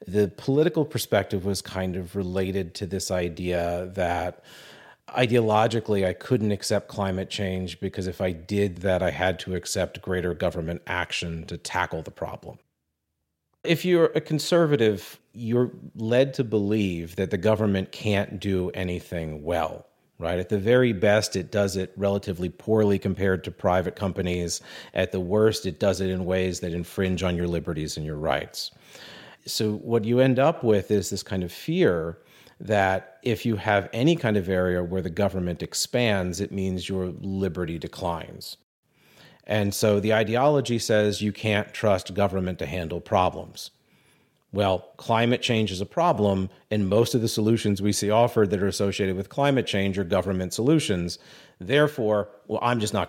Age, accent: 40-59, American